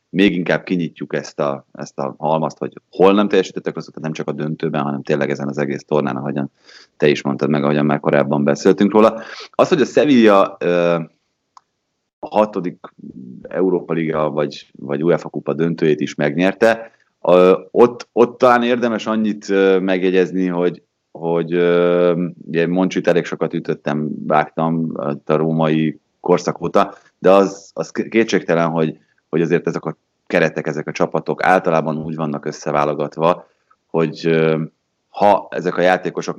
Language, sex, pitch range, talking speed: Hungarian, male, 75-90 Hz, 145 wpm